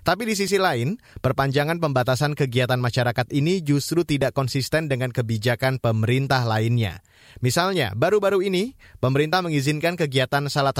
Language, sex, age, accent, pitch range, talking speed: Indonesian, male, 30-49, native, 120-155 Hz, 130 wpm